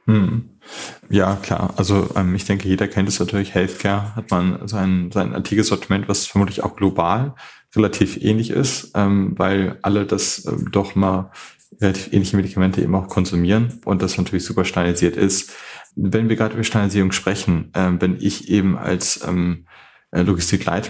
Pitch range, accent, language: 90-100 Hz, German, German